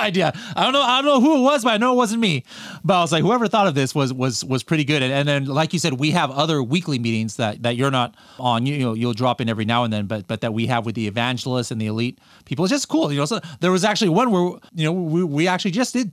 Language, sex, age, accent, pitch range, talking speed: English, male, 30-49, American, 120-160 Hz, 315 wpm